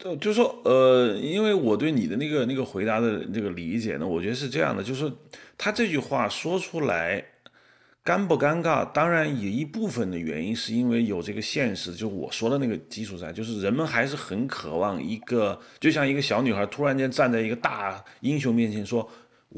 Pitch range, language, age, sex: 110-170 Hz, Chinese, 30-49, male